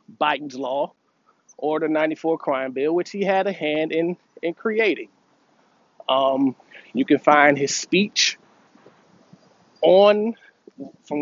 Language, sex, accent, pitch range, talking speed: English, male, American, 135-180 Hz, 125 wpm